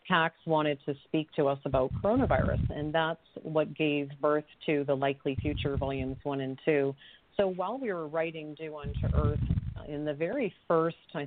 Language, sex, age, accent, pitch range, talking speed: English, female, 40-59, American, 145-175 Hz, 180 wpm